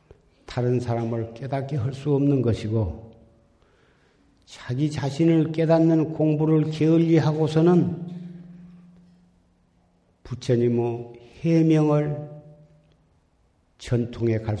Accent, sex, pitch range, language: native, male, 110-140 Hz, Korean